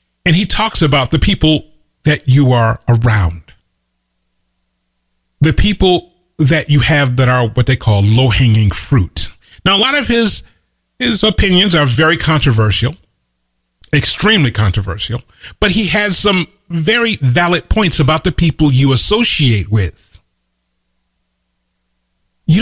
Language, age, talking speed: English, 40-59, 125 wpm